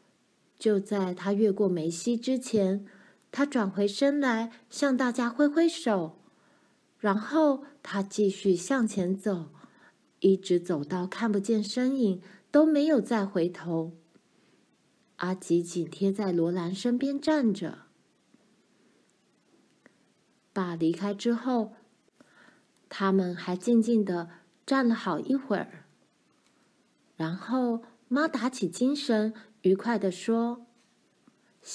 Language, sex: Chinese, female